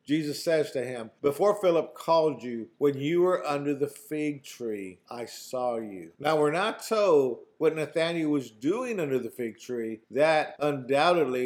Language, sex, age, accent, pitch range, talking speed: English, male, 50-69, American, 120-160 Hz, 170 wpm